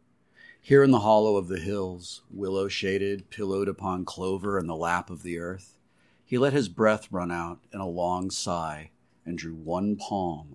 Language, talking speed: English, 175 wpm